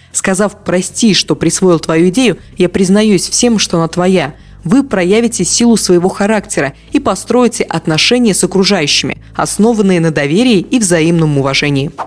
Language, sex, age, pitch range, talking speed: Russian, female, 20-39, 170-225 Hz, 140 wpm